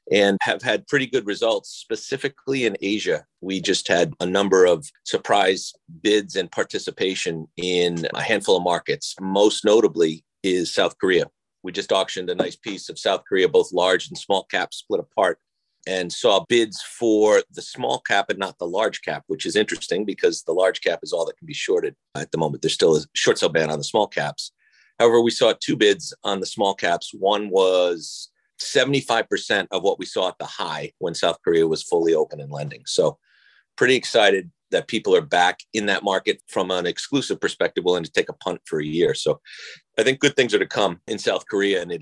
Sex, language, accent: male, English, American